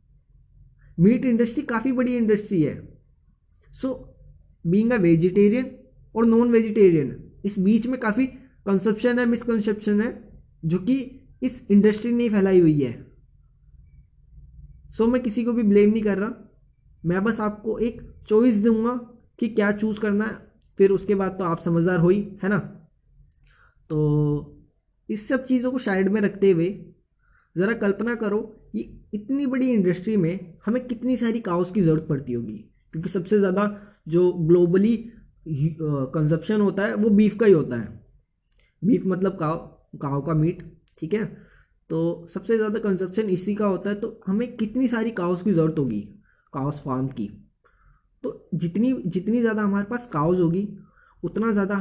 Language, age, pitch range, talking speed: Hindi, 20-39, 165-220 Hz, 160 wpm